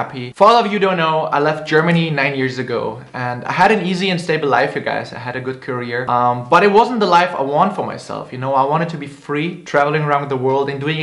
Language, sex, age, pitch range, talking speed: Urdu, male, 20-39, 135-175 Hz, 270 wpm